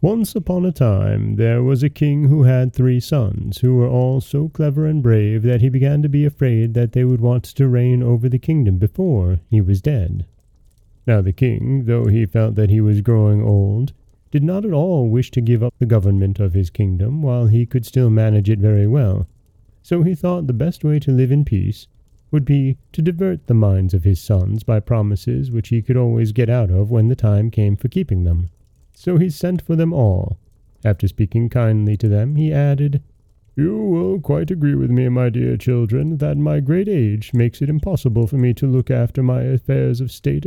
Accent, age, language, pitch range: American, 30-49, English, 110-145 Hz